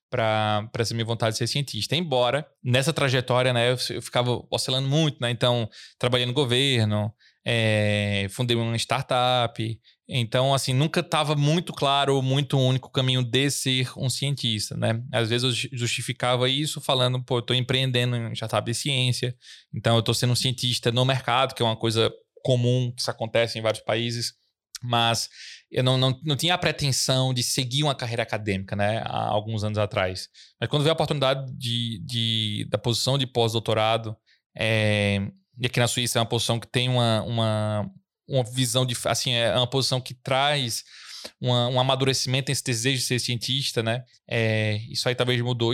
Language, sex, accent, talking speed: Portuguese, male, Brazilian, 170 wpm